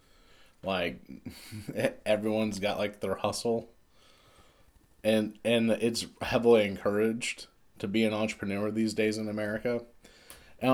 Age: 20-39